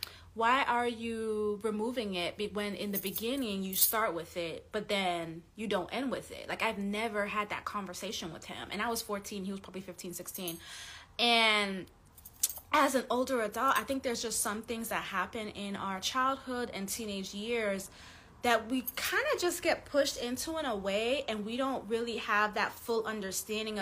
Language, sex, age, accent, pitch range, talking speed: English, female, 20-39, American, 190-240 Hz, 190 wpm